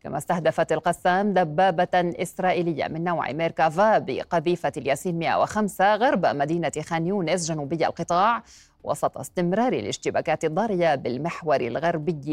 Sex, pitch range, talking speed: female, 165-195 Hz, 110 wpm